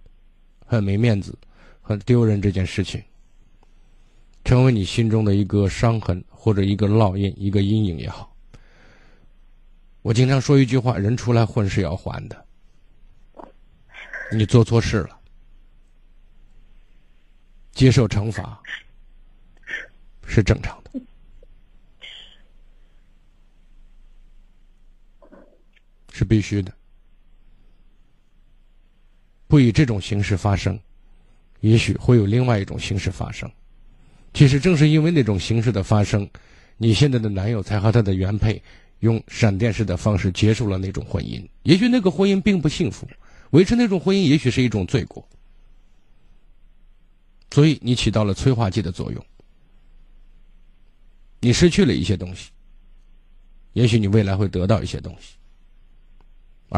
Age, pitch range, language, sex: 50-69, 95-120 Hz, Chinese, male